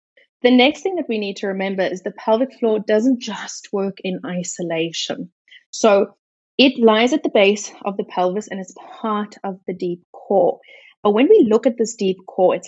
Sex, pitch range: female, 195-250 Hz